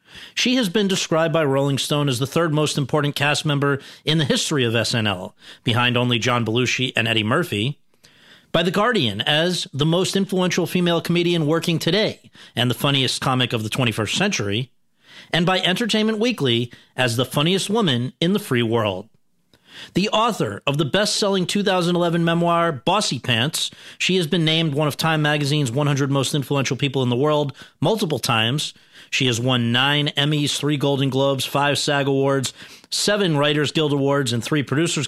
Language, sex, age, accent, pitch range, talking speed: English, male, 40-59, American, 125-175 Hz, 175 wpm